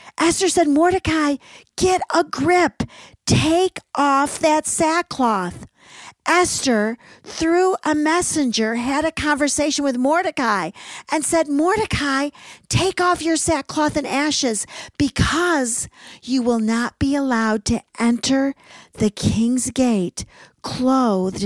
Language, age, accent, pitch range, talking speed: English, 50-69, American, 205-280 Hz, 110 wpm